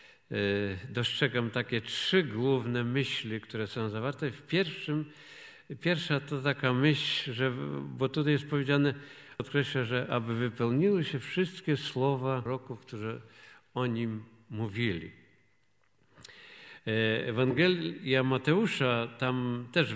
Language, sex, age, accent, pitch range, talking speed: Polish, male, 50-69, native, 120-155 Hz, 105 wpm